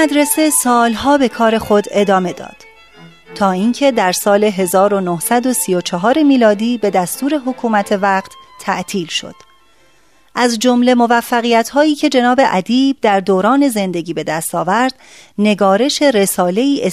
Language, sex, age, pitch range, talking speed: Persian, female, 30-49, 190-250 Hz, 115 wpm